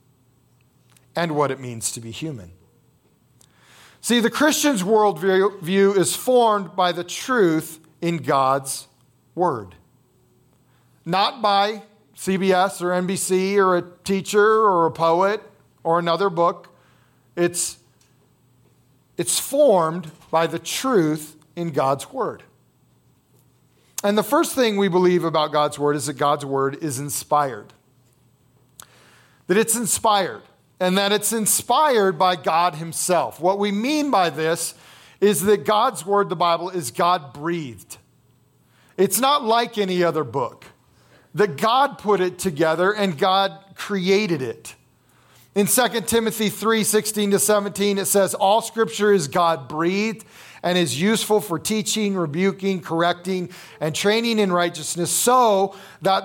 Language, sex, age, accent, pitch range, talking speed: English, male, 40-59, American, 155-205 Hz, 130 wpm